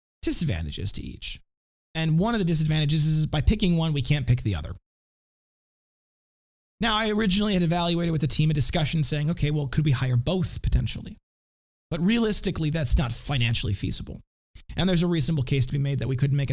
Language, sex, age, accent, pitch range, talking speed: English, male, 30-49, American, 125-160 Hz, 190 wpm